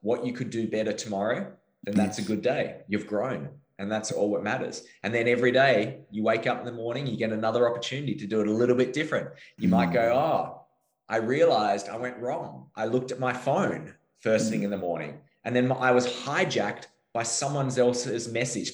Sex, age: male, 20-39